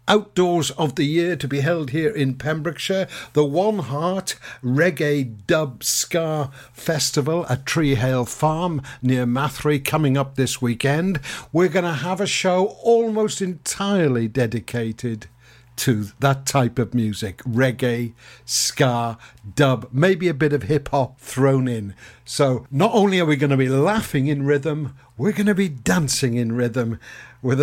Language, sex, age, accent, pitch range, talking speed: English, male, 60-79, British, 125-160 Hz, 150 wpm